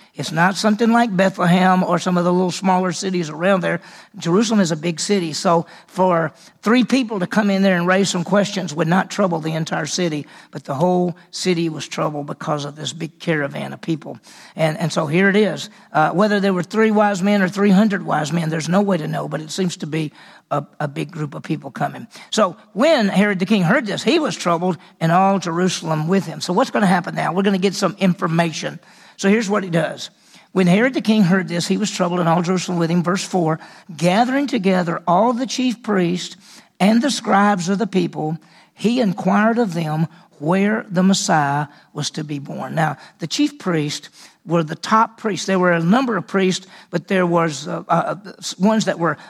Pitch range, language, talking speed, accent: 170-205 Hz, English, 215 wpm, American